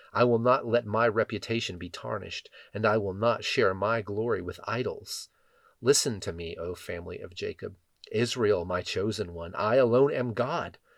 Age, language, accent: 40-59, English, American